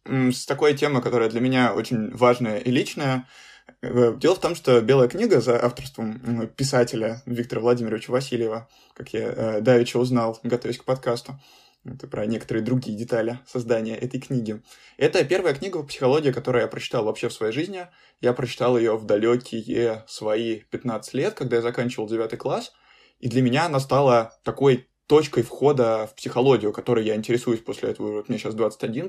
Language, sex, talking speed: Russian, male, 165 wpm